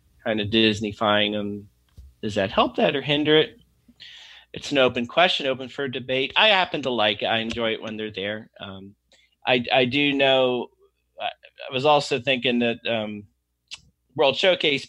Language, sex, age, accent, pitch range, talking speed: English, male, 30-49, American, 105-135 Hz, 175 wpm